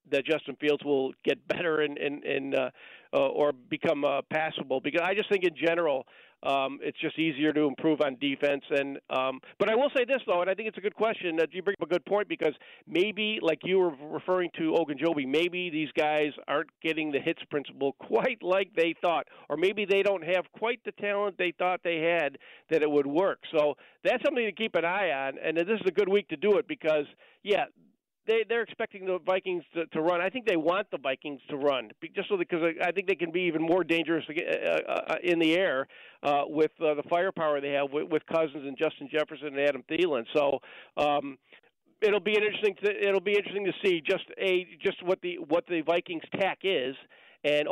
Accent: American